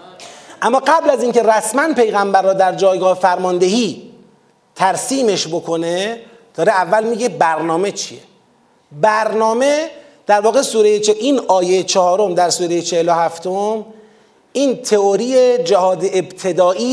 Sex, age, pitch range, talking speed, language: male, 30-49, 185-255 Hz, 115 wpm, Persian